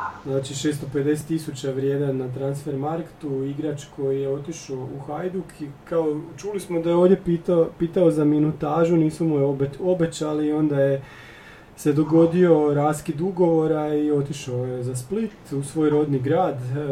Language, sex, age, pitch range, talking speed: Croatian, male, 30-49, 135-165 Hz, 155 wpm